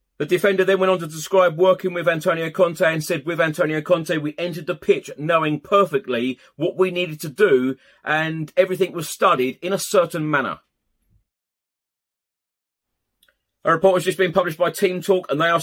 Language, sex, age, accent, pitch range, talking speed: English, male, 30-49, British, 145-175 Hz, 180 wpm